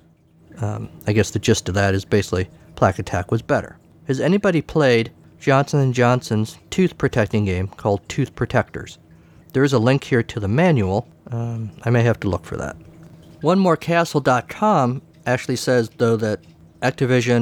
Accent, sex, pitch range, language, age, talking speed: American, male, 105-130 Hz, English, 50-69, 160 wpm